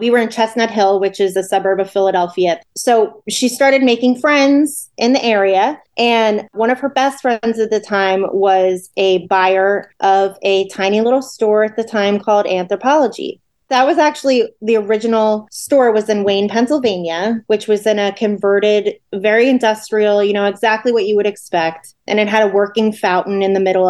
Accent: American